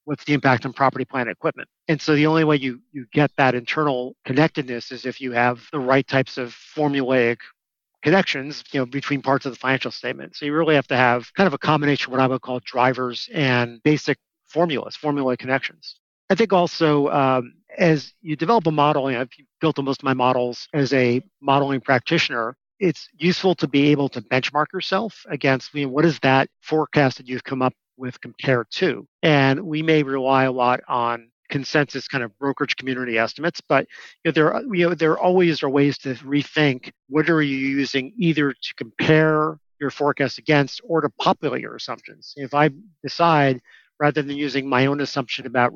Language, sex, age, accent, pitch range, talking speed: English, male, 50-69, American, 130-150 Hz, 200 wpm